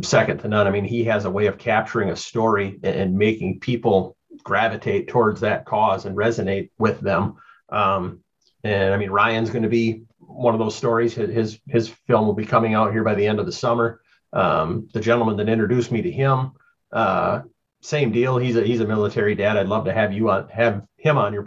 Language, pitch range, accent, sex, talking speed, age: English, 105-120 Hz, American, male, 215 wpm, 30-49